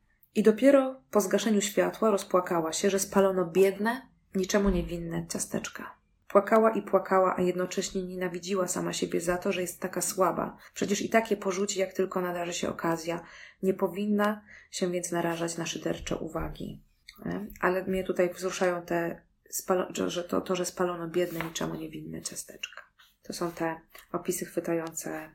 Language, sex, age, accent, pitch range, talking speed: Polish, female, 20-39, native, 170-195 Hz, 150 wpm